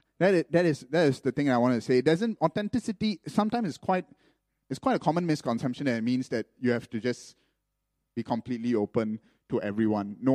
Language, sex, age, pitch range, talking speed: English, male, 30-49, 110-150 Hz, 210 wpm